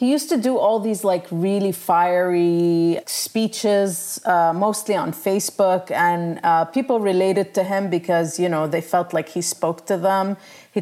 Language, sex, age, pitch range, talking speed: English, female, 30-49, 175-215 Hz, 170 wpm